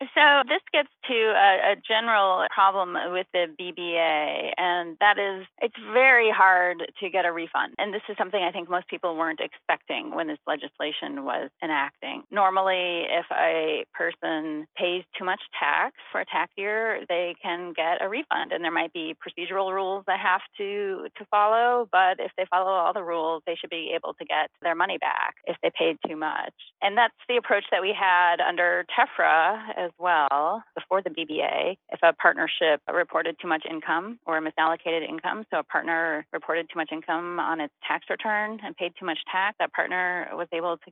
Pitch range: 170-205 Hz